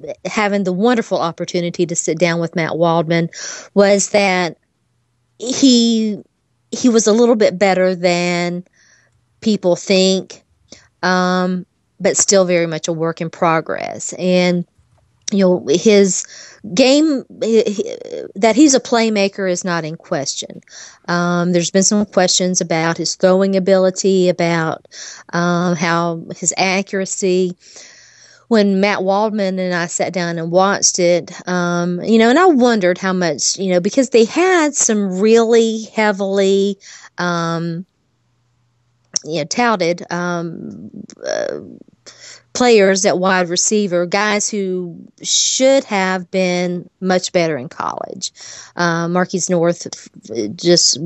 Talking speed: 125 wpm